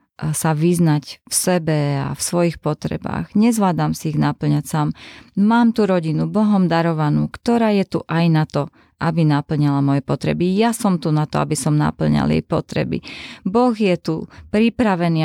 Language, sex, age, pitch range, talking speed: Slovak, female, 20-39, 150-190 Hz, 165 wpm